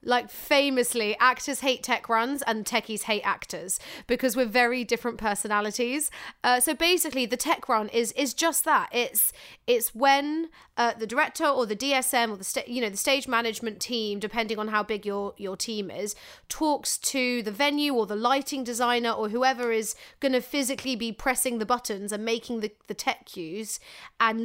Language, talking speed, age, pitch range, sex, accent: English, 185 wpm, 30-49, 225-270 Hz, female, British